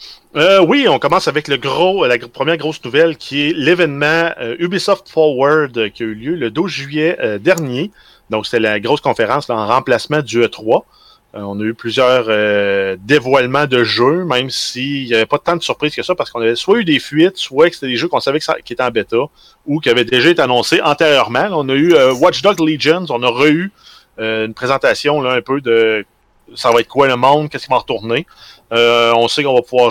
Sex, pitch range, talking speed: male, 115-160 Hz, 240 wpm